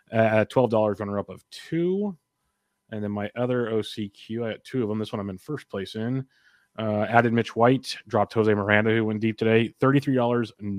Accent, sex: American, male